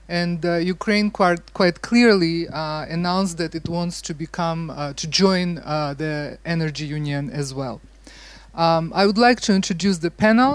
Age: 30-49